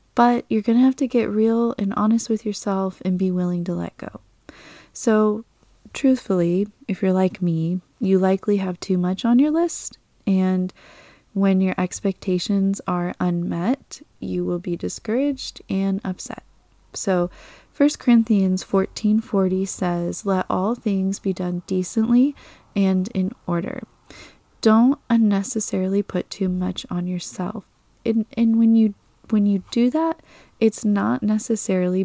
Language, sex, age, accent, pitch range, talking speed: English, female, 20-39, American, 185-230 Hz, 145 wpm